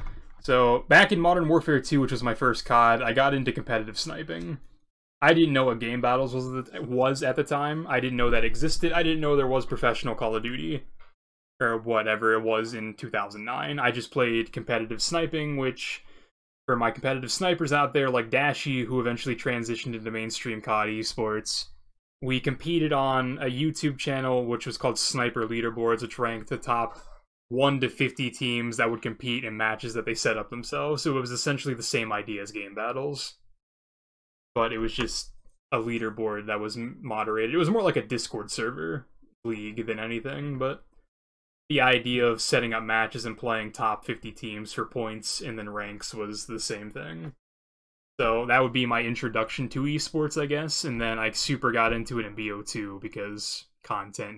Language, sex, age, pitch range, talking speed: English, male, 20-39, 110-130 Hz, 185 wpm